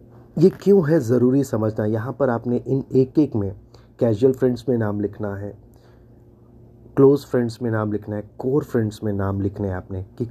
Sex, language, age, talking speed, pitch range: male, Hindi, 30-49, 185 wpm, 105-125 Hz